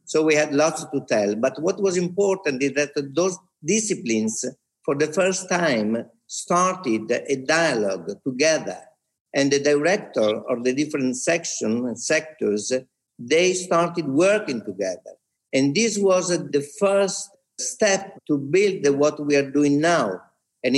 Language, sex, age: Italian, male, 50-69